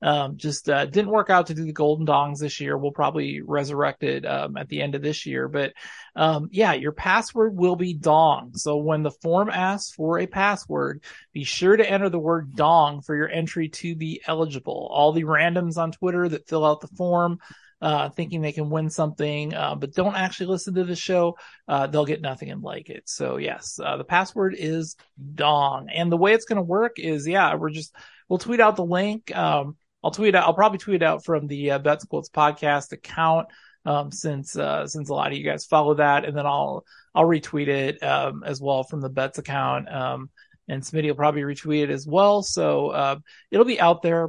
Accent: American